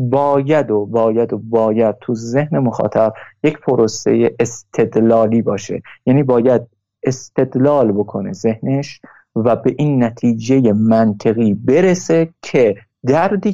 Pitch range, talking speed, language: 115-150 Hz, 110 wpm, Persian